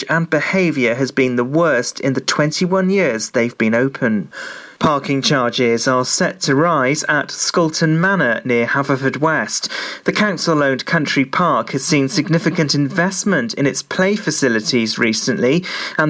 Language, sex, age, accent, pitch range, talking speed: English, male, 40-59, British, 130-170 Hz, 145 wpm